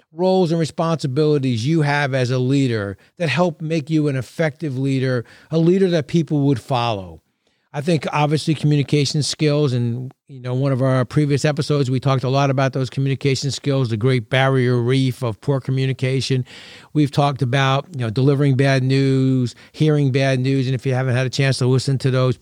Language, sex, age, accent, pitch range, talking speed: English, male, 50-69, American, 130-150 Hz, 190 wpm